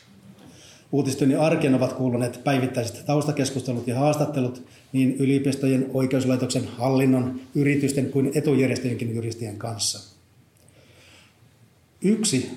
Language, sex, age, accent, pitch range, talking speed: Finnish, male, 30-49, native, 120-135 Hz, 85 wpm